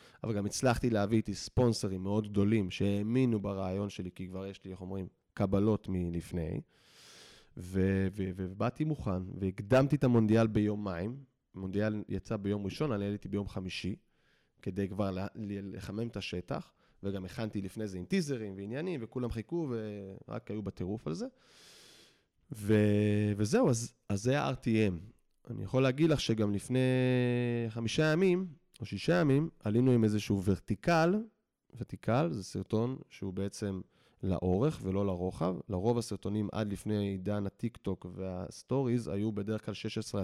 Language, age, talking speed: Hebrew, 20-39, 140 wpm